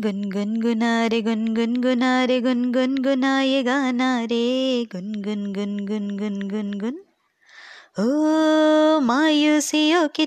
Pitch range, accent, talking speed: 255-360 Hz, native, 140 wpm